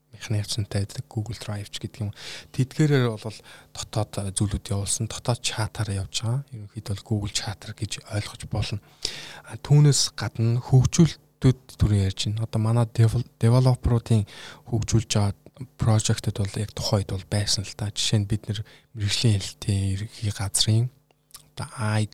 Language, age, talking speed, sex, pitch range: Russian, 20-39, 85 wpm, male, 105-120 Hz